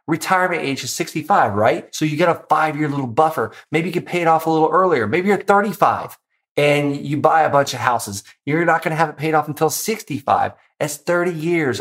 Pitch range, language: 110-145 Hz, English